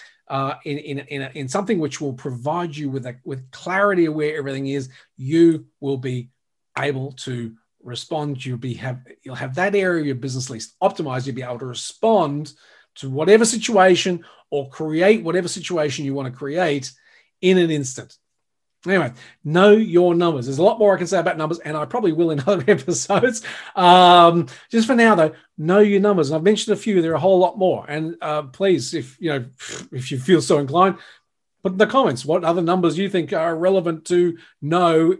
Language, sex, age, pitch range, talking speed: English, male, 40-59, 135-175 Hz, 200 wpm